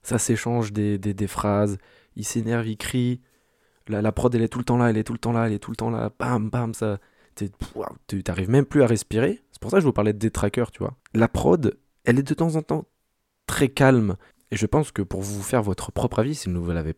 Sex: male